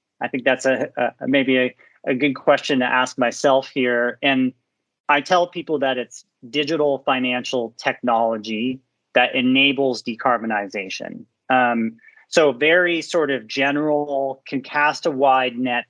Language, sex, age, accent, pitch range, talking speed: English, male, 30-49, American, 120-140 Hz, 140 wpm